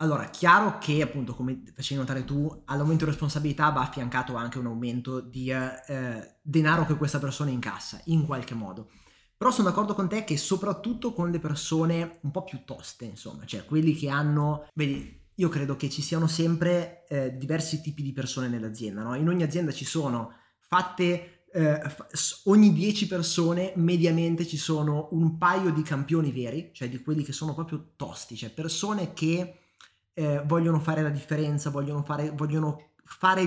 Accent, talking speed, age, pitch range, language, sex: native, 175 wpm, 20-39, 135-170 Hz, Italian, male